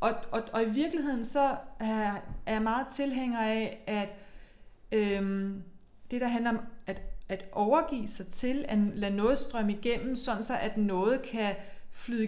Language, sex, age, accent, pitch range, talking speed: Danish, female, 30-49, native, 205-260 Hz, 160 wpm